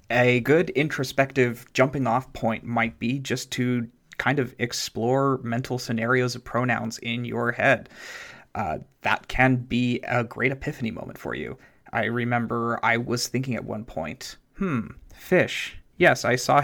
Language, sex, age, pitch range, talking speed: English, male, 30-49, 115-135 Hz, 150 wpm